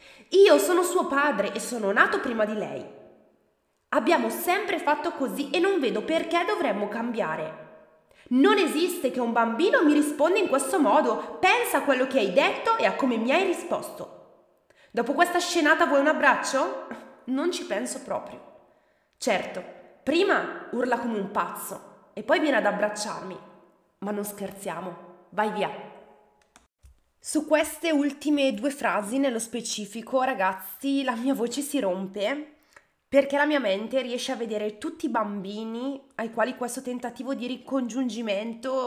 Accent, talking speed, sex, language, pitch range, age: native, 150 wpm, female, Italian, 215-300 Hz, 20-39